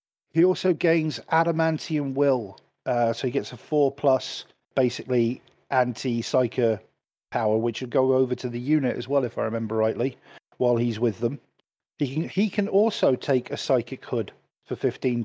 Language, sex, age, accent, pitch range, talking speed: English, male, 50-69, British, 125-160 Hz, 170 wpm